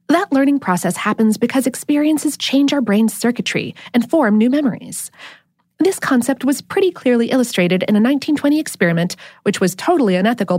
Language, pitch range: English, 185-285 Hz